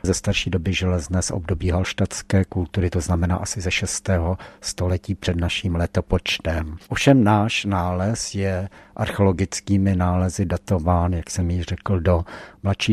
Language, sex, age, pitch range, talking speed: Czech, male, 60-79, 90-100 Hz, 140 wpm